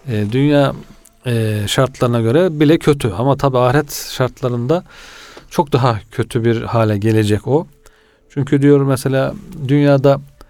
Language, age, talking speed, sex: Turkish, 40-59, 115 wpm, male